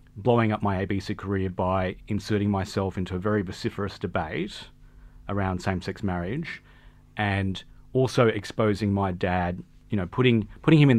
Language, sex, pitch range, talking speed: English, male, 100-120 Hz, 145 wpm